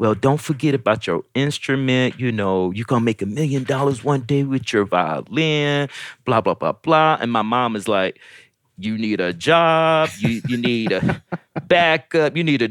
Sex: male